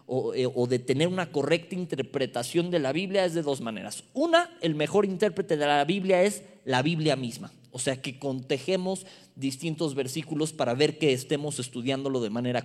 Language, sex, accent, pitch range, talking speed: Spanish, male, Mexican, 135-195 Hz, 175 wpm